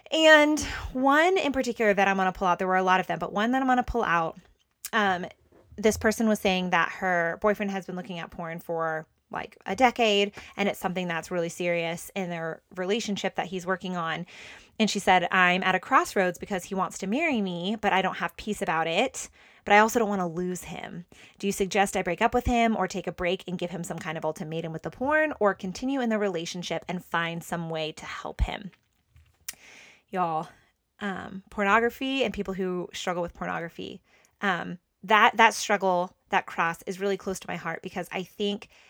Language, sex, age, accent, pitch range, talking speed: English, female, 20-39, American, 175-210 Hz, 215 wpm